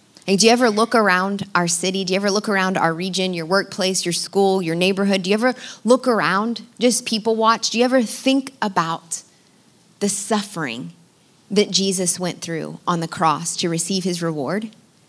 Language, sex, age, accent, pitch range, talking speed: English, female, 20-39, American, 170-200 Hz, 185 wpm